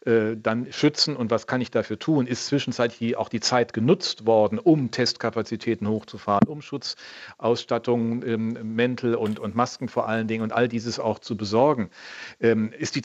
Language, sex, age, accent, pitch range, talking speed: German, male, 50-69, German, 115-130 Hz, 170 wpm